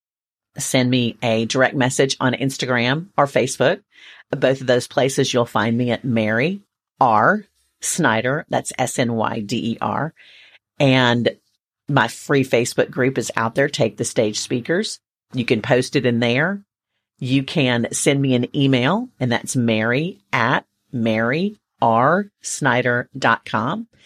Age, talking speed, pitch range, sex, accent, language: 50-69, 130 wpm, 120-150 Hz, female, American, English